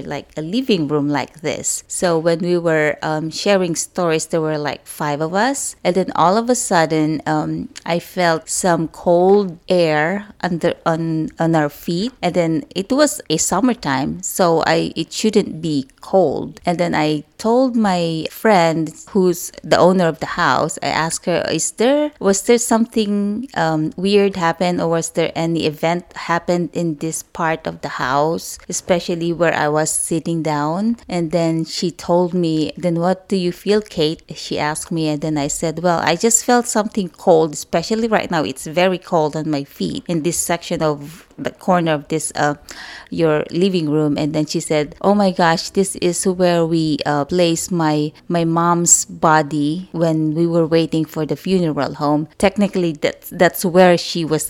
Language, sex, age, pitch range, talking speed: English, female, 20-39, 155-185 Hz, 180 wpm